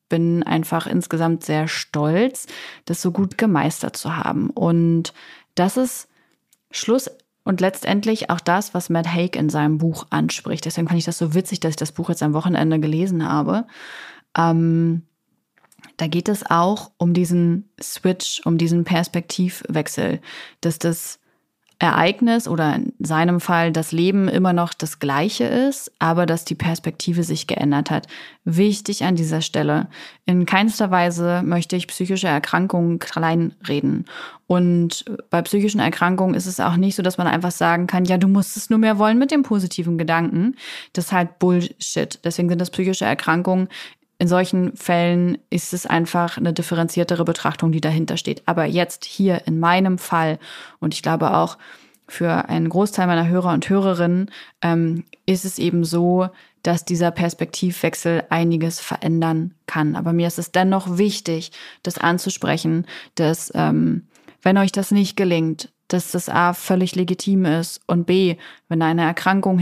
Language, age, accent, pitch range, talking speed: German, 30-49, German, 165-190 Hz, 160 wpm